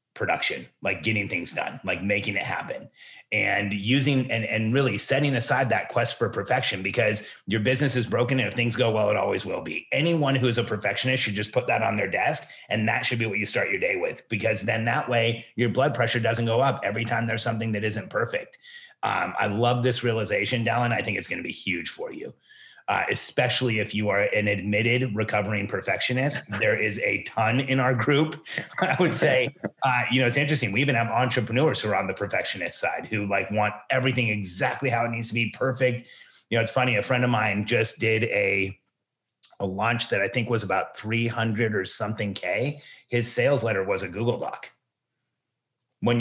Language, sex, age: English, male, 30-49